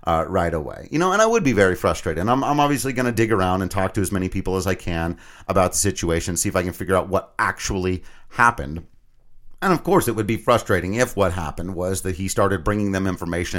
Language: English